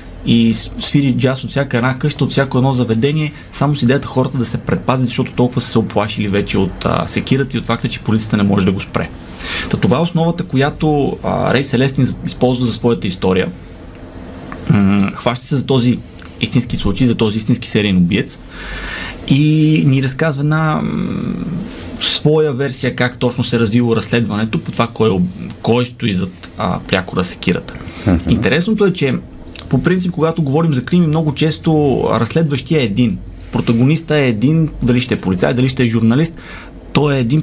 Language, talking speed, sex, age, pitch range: Bulgarian, 180 wpm, male, 20-39, 105-140 Hz